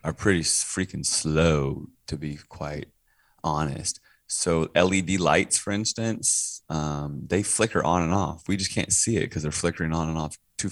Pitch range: 80-95 Hz